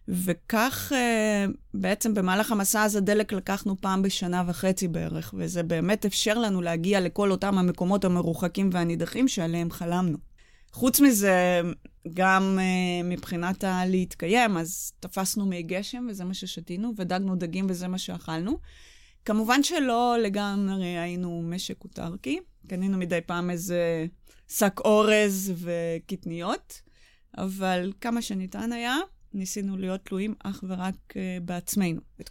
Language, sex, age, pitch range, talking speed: Hebrew, female, 20-39, 175-210 Hz, 125 wpm